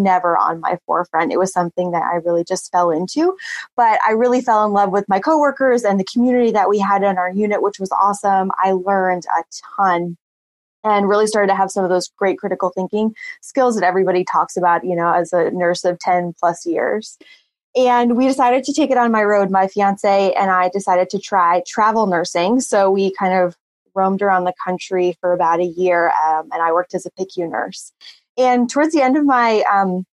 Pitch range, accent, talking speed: 180-220 Hz, American, 215 wpm